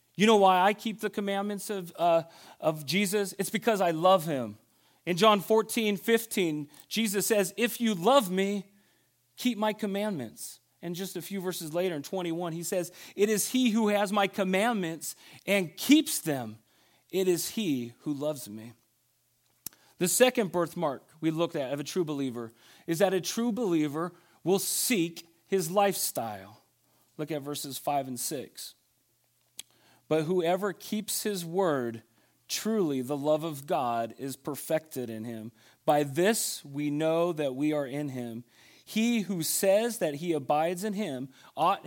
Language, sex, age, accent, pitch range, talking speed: English, male, 40-59, American, 150-210 Hz, 160 wpm